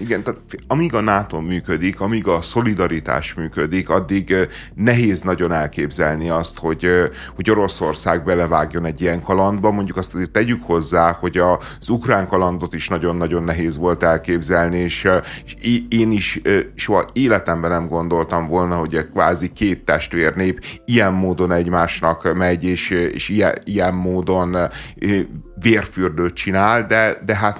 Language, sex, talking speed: Hungarian, male, 135 wpm